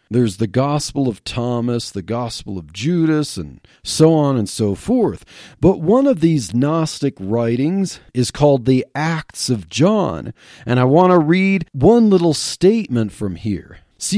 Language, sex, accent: English, male, American